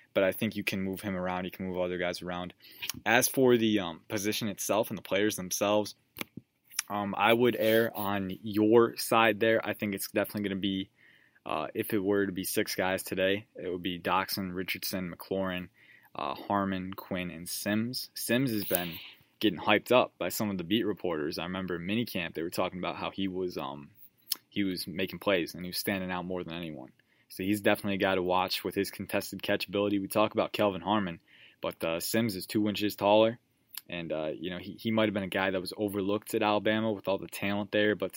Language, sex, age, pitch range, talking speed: English, male, 20-39, 95-110 Hz, 220 wpm